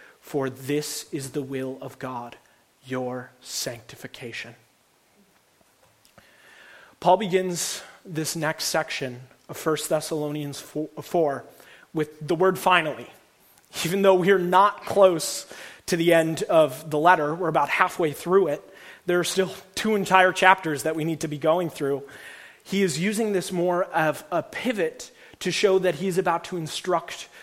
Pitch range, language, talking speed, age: 145-185 Hz, English, 145 wpm, 30-49